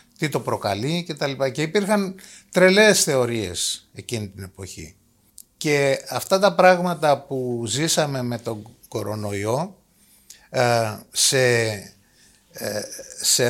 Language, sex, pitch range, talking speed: Greek, male, 110-155 Hz, 105 wpm